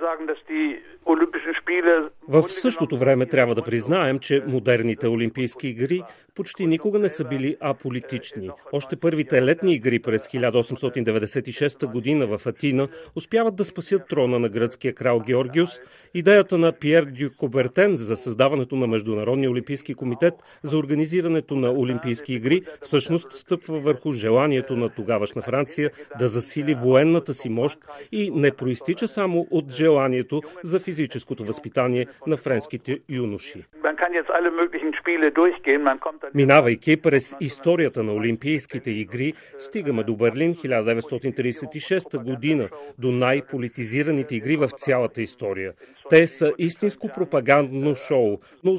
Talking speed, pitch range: 115 wpm, 125-160 Hz